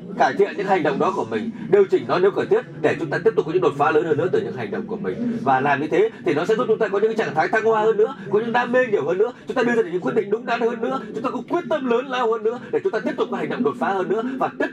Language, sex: Vietnamese, male